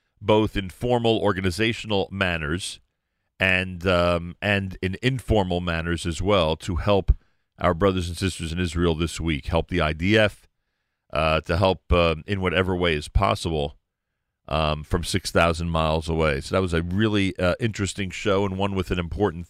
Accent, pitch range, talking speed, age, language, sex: American, 85-105 Hz, 165 wpm, 40-59, English, male